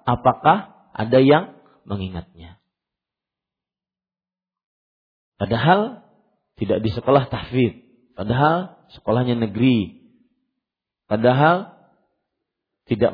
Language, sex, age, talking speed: Malay, male, 40-59, 65 wpm